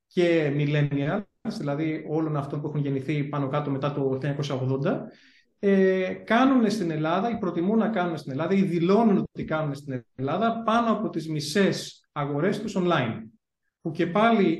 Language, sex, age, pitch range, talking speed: Greek, male, 30-49, 145-195 Hz, 155 wpm